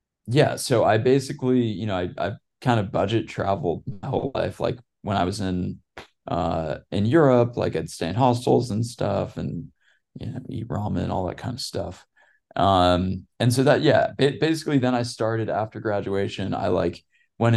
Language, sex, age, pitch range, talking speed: English, male, 20-39, 95-120 Hz, 190 wpm